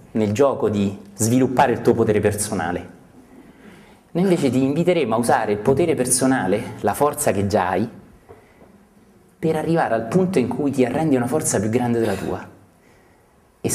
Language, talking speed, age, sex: Italian, 160 wpm, 30-49, male